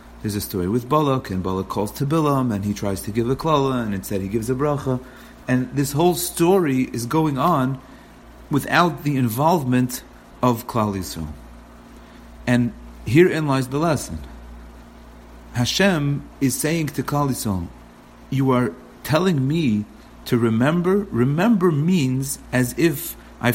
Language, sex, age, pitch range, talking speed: English, male, 40-59, 100-135 Hz, 140 wpm